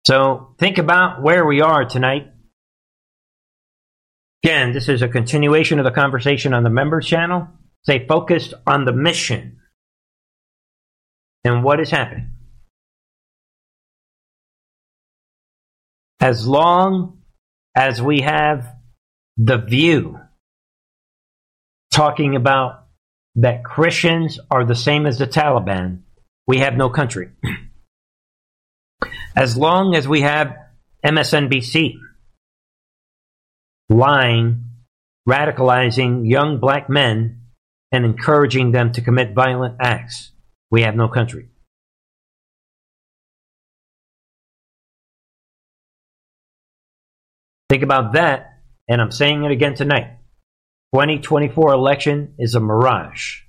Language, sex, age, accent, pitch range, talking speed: English, male, 50-69, American, 120-150 Hz, 100 wpm